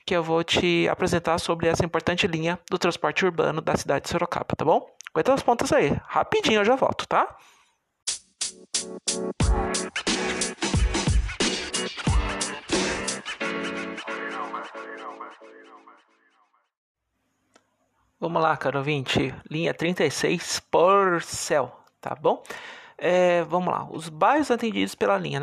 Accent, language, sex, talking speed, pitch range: Brazilian, Portuguese, male, 105 wpm, 160-220 Hz